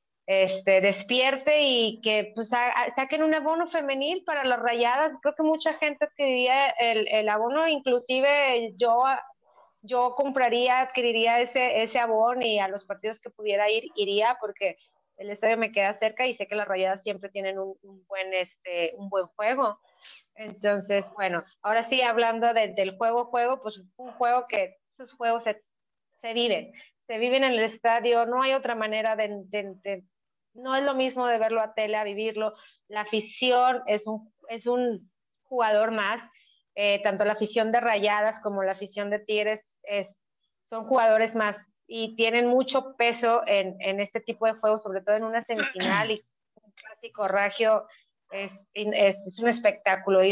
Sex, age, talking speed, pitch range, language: female, 30-49, 170 wpm, 205-245 Hz, Spanish